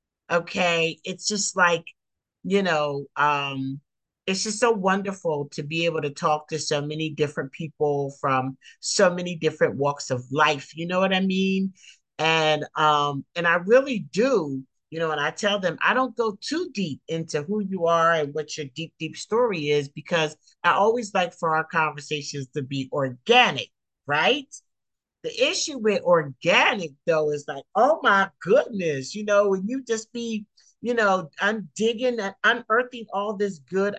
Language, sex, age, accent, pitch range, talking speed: English, male, 50-69, American, 150-205 Hz, 170 wpm